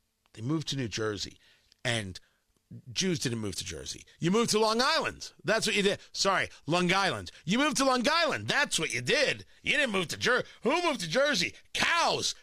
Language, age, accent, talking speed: English, 40-59, American, 205 wpm